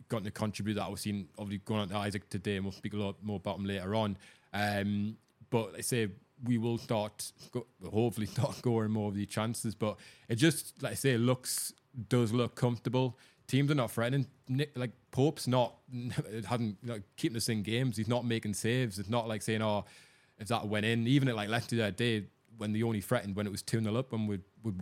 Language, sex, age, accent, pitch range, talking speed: English, male, 20-39, British, 100-120 Hz, 220 wpm